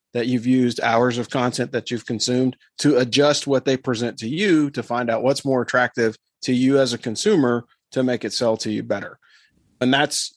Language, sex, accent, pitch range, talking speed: English, male, American, 120-140 Hz, 210 wpm